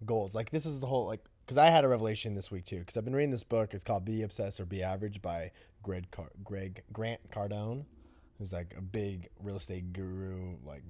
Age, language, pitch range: 20-39, English, 100-140 Hz